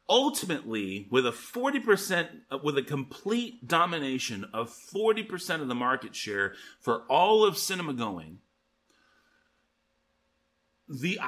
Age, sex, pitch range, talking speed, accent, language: 30-49, male, 120-185 Hz, 105 wpm, American, English